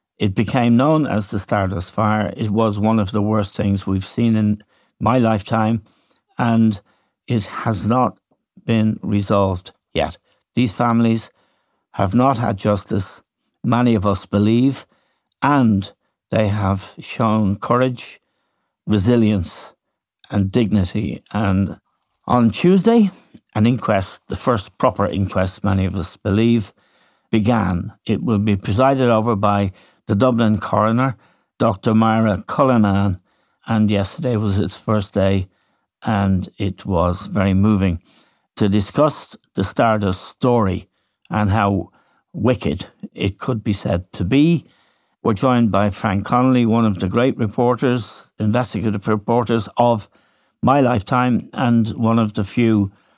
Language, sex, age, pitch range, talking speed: English, male, 60-79, 100-115 Hz, 130 wpm